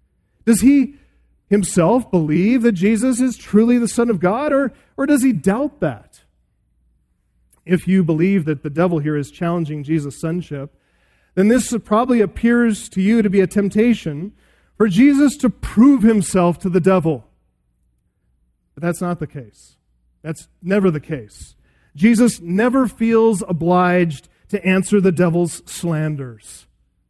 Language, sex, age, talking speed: English, male, 40-59, 145 wpm